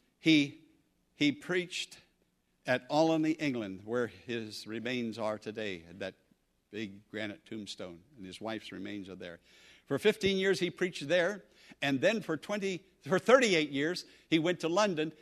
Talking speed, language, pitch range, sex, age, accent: 150 wpm, English, 130-190 Hz, male, 60-79, American